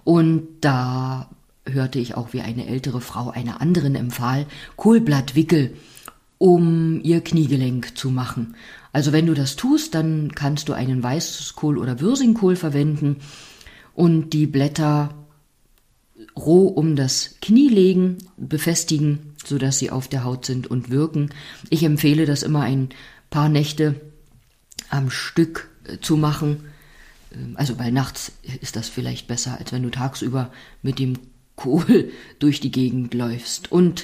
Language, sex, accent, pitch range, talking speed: German, female, German, 130-160 Hz, 135 wpm